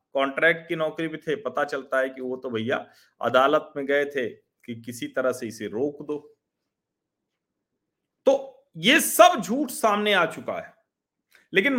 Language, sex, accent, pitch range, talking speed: Hindi, male, native, 130-210 Hz, 165 wpm